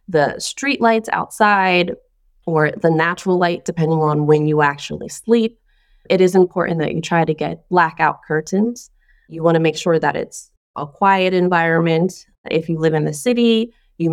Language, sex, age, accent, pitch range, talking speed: English, female, 20-39, American, 155-185 Hz, 175 wpm